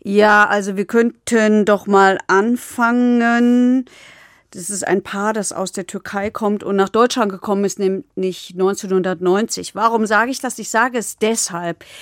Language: German